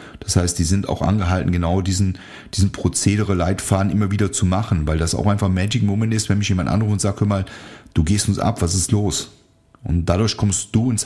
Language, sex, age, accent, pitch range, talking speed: German, male, 40-59, German, 95-115 Hz, 230 wpm